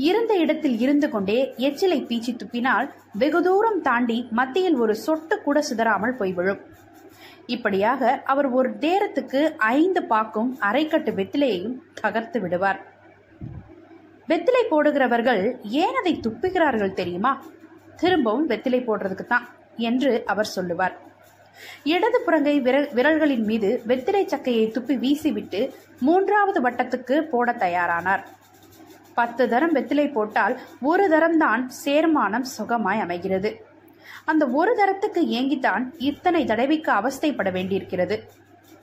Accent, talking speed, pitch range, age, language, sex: native, 105 wpm, 230-330 Hz, 20-39, Tamil, female